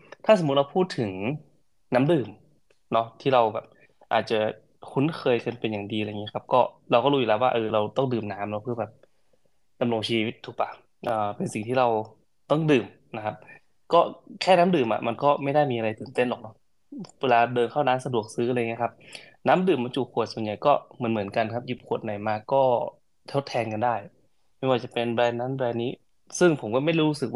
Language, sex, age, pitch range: Thai, male, 20-39, 110-135 Hz